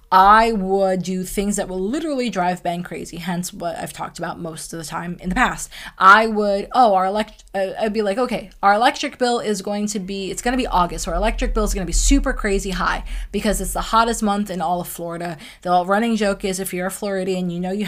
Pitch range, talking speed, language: 180-225 Hz, 240 wpm, English